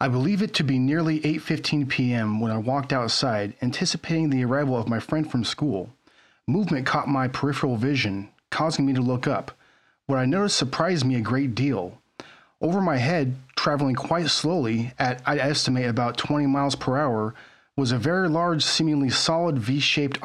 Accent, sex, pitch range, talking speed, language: American, male, 125-155 Hz, 175 wpm, English